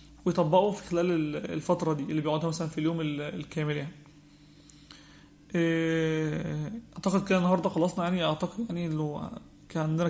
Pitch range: 155-180 Hz